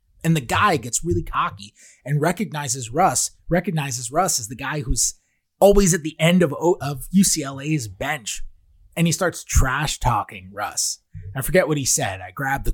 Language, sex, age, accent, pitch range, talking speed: English, male, 30-49, American, 115-180 Hz, 175 wpm